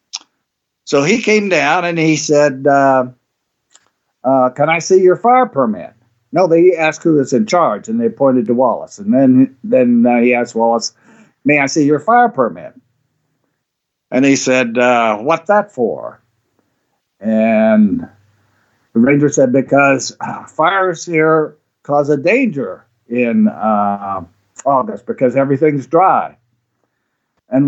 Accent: American